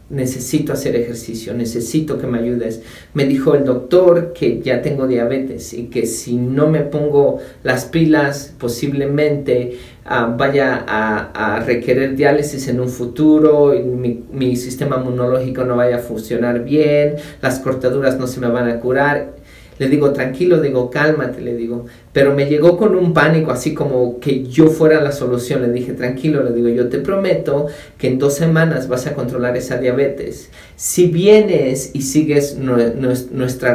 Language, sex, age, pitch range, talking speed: Spanish, male, 40-59, 125-150 Hz, 165 wpm